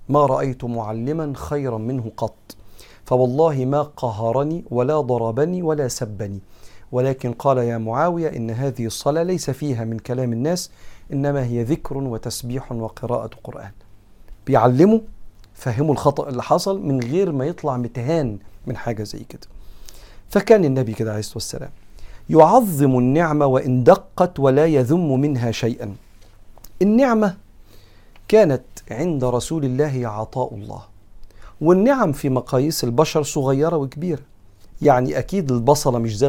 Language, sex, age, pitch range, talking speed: Arabic, male, 50-69, 115-150 Hz, 125 wpm